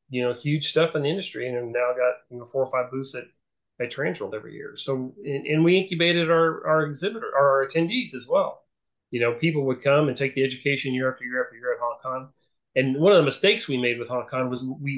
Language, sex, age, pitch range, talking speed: English, male, 30-49, 120-140 Hz, 245 wpm